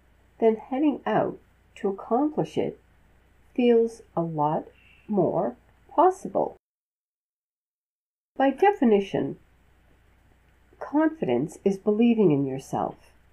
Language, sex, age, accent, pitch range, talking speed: English, female, 50-69, American, 165-245 Hz, 80 wpm